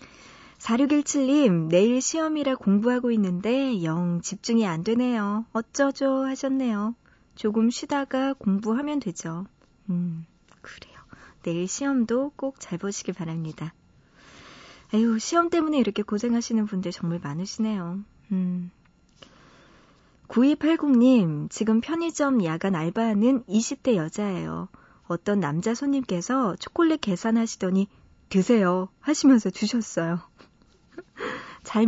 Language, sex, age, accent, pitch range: Korean, male, 40-59, native, 190-255 Hz